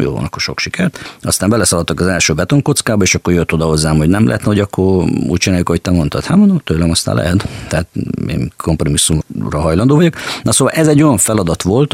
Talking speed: 200 wpm